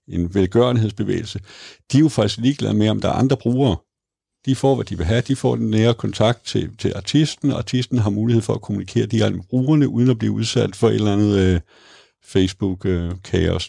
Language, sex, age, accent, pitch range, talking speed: Danish, male, 60-79, native, 100-125 Hz, 205 wpm